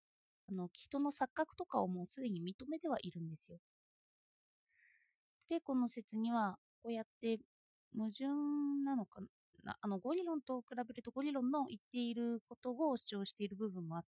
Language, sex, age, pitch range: Japanese, female, 30-49, 205-300 Hz